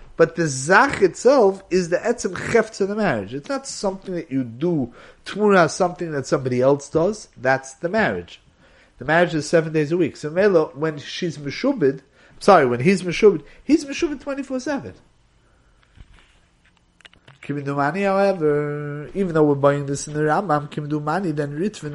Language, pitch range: English, 140-175 Hz